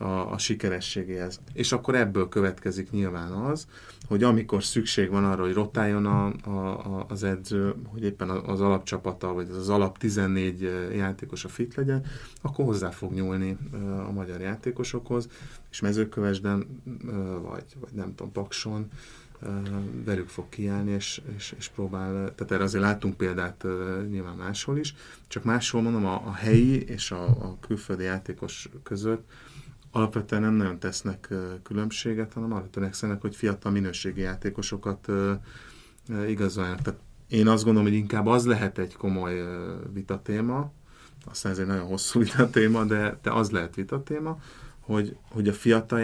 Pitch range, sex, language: 95-115 Hz, male, Hungarian